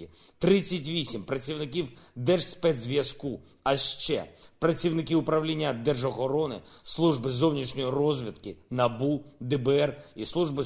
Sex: male